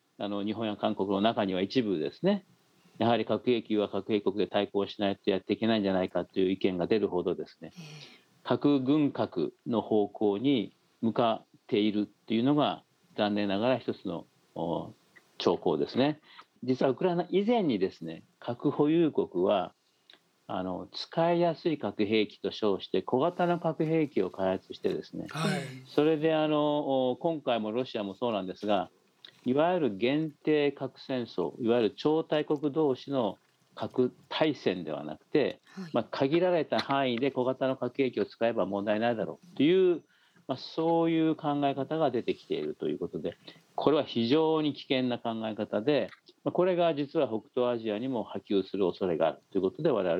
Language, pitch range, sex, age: Japanese, 105-155 Hz, male, 40-59